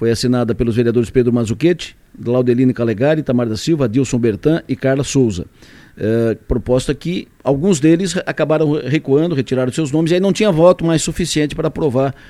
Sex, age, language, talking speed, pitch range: male, 50-69, Portuguese, 170 wpm, 125-165 Hz